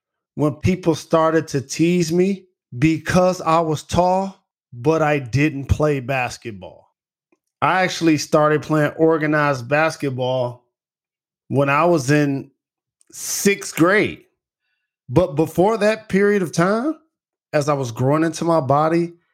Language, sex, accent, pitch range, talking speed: English, male, American, 125-170 Hz, 125 wpm